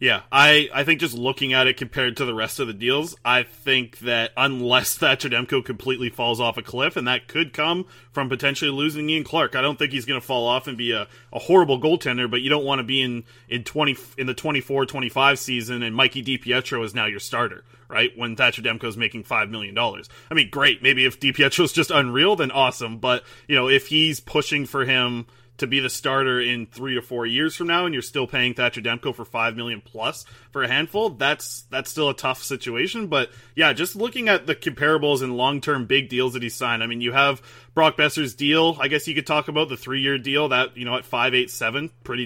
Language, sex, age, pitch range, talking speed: English, male, 30-49, 120-150 Hz, 240 wpm